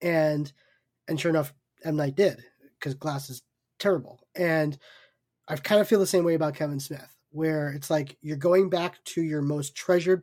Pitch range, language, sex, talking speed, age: 145-175 Hz, English, male, 190 wpm, 20-39